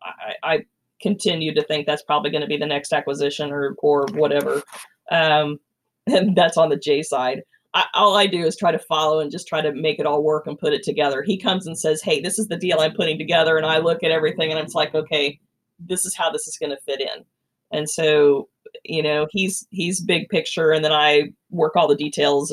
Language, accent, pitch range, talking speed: English, American, 150-185 Hz, 230 wpm